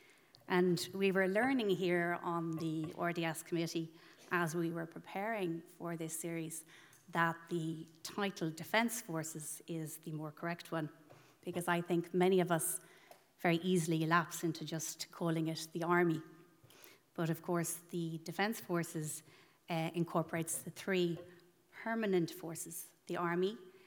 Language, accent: English, Irish